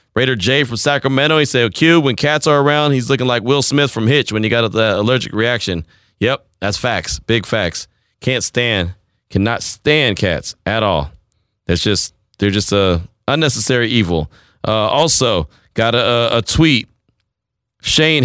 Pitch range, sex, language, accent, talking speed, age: 110-145 Hz, male, English, American, 165 wpm, 30-49